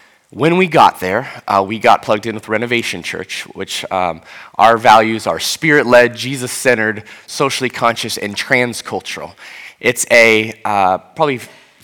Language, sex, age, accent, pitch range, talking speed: English, male, 20-39, American, 110-140 Hz, 135 wpm